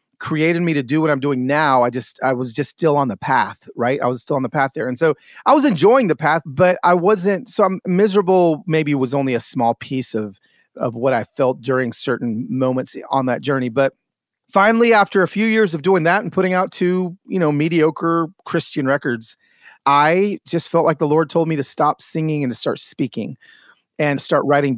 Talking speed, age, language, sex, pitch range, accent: 225 wpm, 30-49, English, male, 140-175 Hz, American